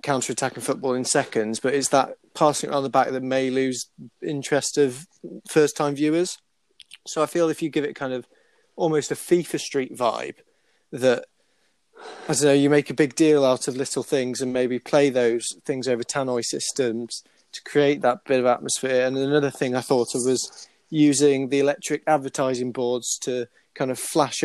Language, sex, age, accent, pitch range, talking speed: English, male, 20-39, British, 125-145 Hz, 185 wpm